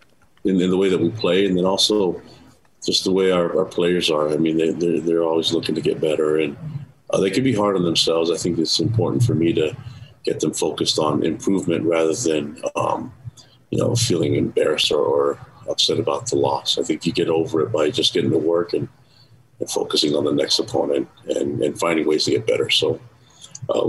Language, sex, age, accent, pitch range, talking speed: English, male, 40-59, American, 85-130 Hz, 215 wpm